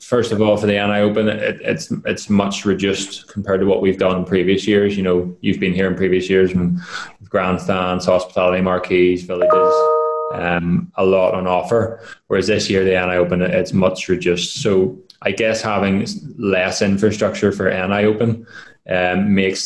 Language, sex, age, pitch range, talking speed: English, male, 20-39, 90-105 Hz, 175 wpm